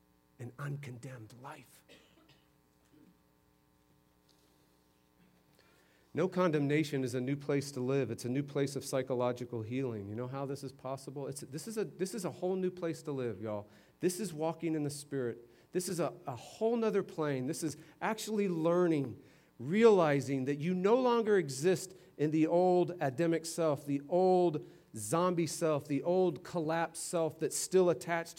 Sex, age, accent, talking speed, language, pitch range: male, 40-59, American, 160 wpm, English, 115-165 Hz